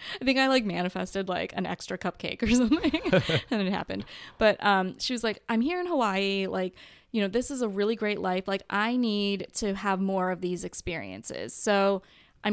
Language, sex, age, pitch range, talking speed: English, female, 20-39, 185-230 Hz, 205 wpm